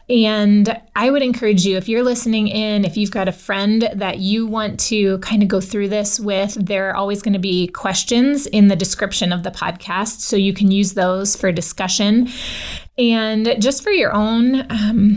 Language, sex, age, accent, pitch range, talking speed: English, female, 20-39, American, 190-225 Hz, 200 wpm